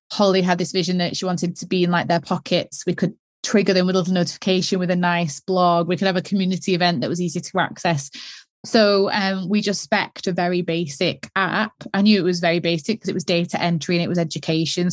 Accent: British